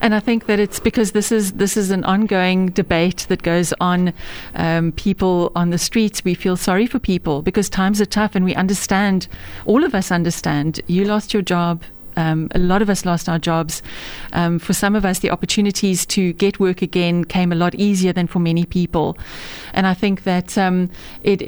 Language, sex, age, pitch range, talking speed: English, female, 40-59, 175-200 Hz, 205 wpm